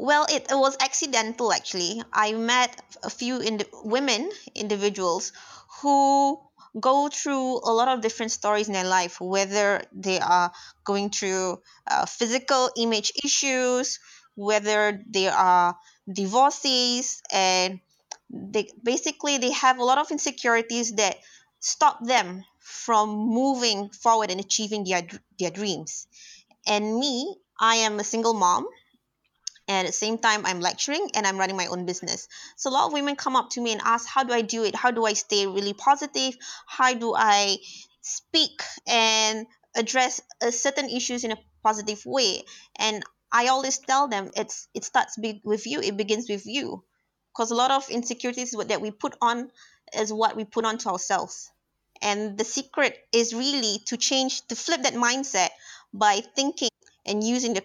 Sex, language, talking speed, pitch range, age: female, English, 165 wpm, 210-265 Hz, 20-39